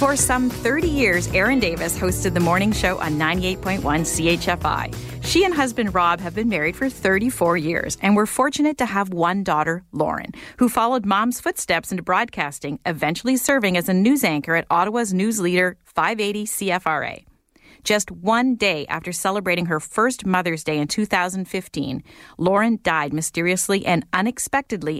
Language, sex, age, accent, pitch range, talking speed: English, female, 40-59, American, 170-230 Hz, 155 wpm